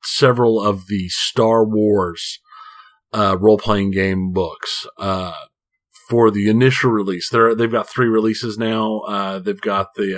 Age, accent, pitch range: 40-59, American, 95-115 Hz